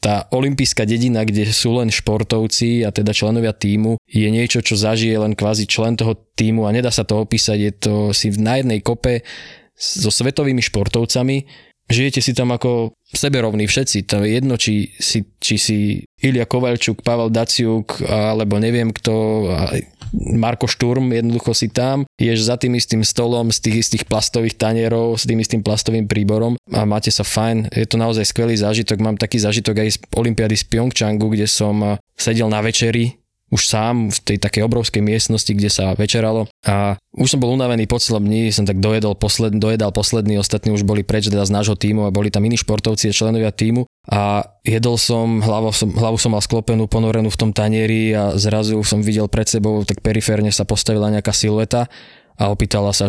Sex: male